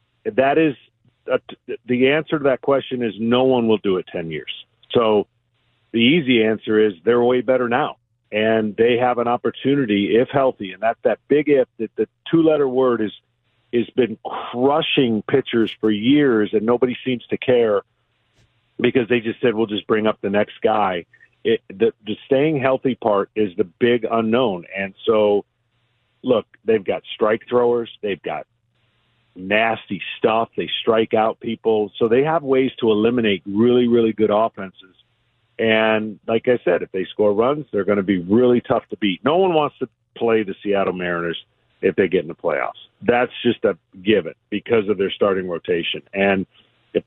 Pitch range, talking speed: 110-125 Hz, 175 wpm